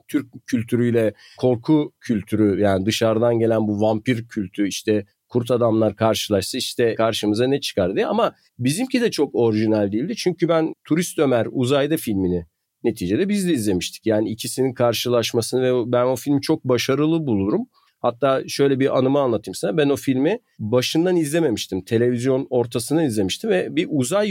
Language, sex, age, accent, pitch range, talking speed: Turkish, male, 50-69, native, 110-150 Hz, 155 wpm